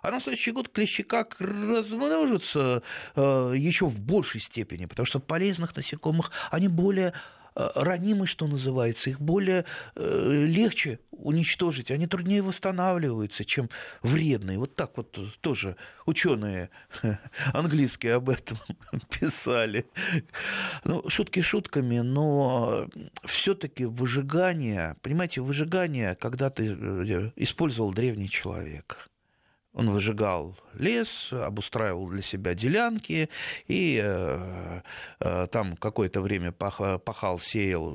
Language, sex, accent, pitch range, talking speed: Russian, male, native, 100-155 Hz, 110 wpm